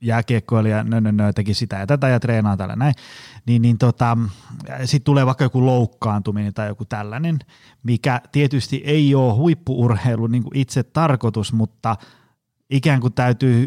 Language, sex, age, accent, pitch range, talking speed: Finnish, male, 30-49, native, 110-135 Hz, 150 wpm